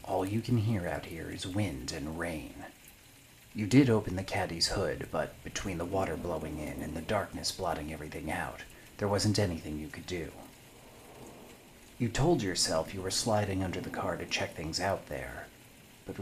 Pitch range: 90-110 Hz